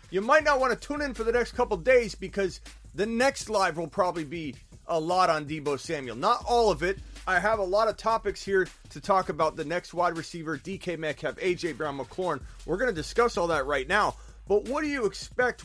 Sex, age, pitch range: male, 30-49, 135-200 Hz